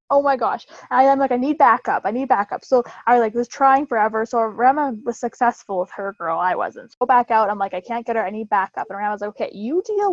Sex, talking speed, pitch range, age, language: female, 265 wpm, 230-300 Hz, 20-39, English